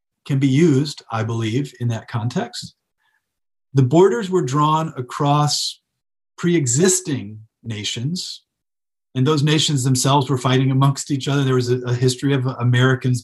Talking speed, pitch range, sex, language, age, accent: 140 wpm, 125-150 Hz, male, English, 40-59, American